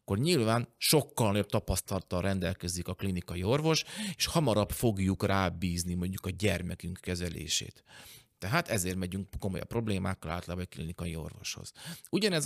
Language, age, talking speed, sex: Hungarian, 40-59, 130 wpm, male